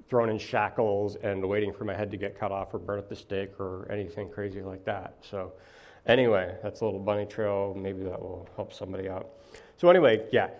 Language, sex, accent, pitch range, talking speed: English, male, American, 110-145 Hz, 215 wpm